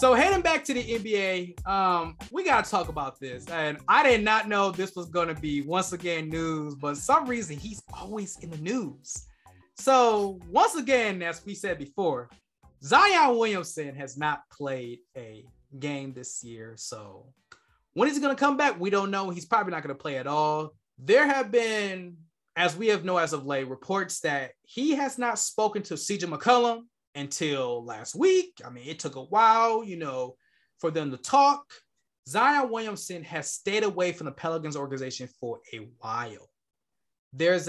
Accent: American